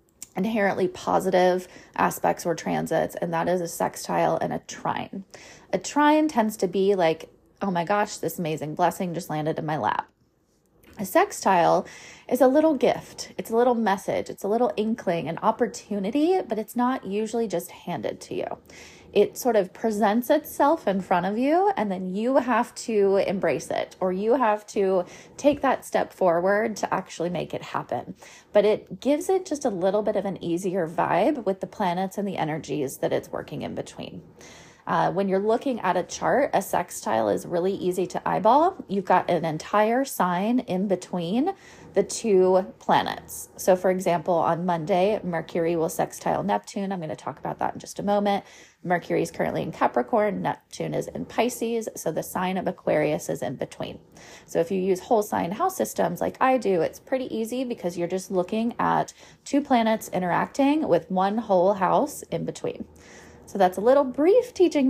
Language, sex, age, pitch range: English, female, 20-39, 180-240 Hz